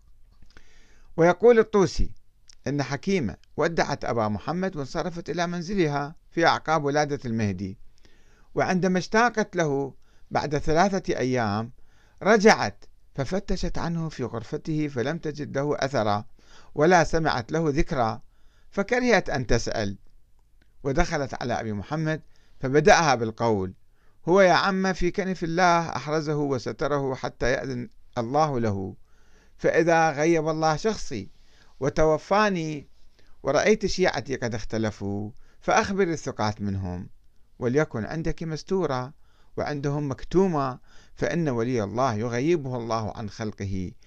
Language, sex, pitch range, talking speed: Arabic, male, 110-160 Hz, 105 wpm